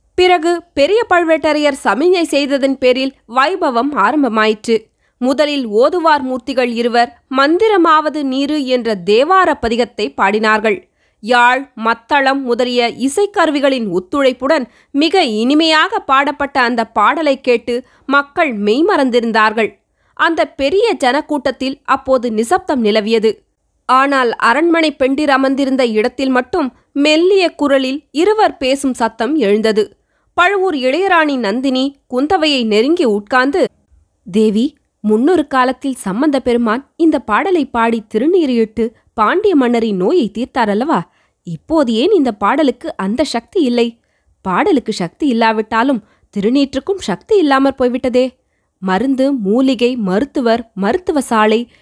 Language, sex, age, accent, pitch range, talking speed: Tamil, female, 20-39, native, 225-305 Hz, 100 wpm